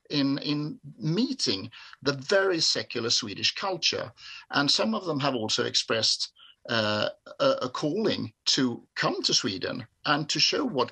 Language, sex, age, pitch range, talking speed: English, male, 50-69, 115-170 Hz, 150 wpm